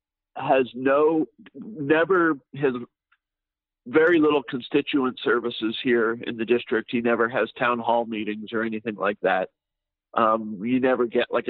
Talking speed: 145 wpm